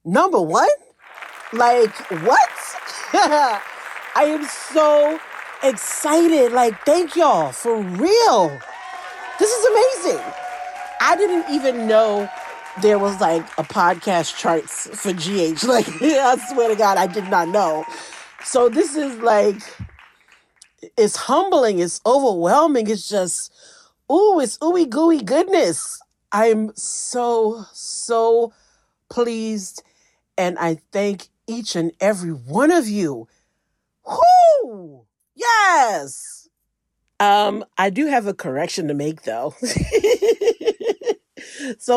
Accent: American